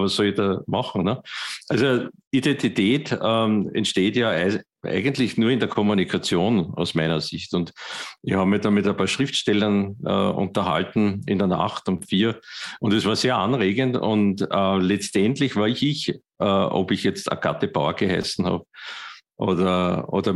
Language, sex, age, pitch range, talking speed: German, male, 50-69, 95-105 Hz, 165 wpm